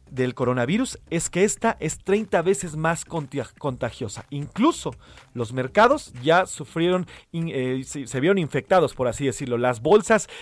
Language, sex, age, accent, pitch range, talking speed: Spanish, male, 40-59, Mexican, 130-170 Hz, 140 wpm